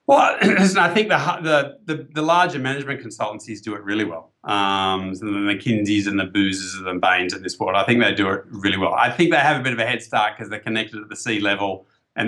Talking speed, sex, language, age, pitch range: 250 wpm, male, English, 30-49, 105-145 Hz